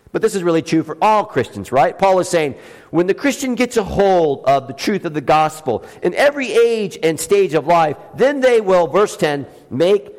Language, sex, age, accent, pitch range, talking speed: English, male, 50-69, American, 155-240 Hz, 220 wpm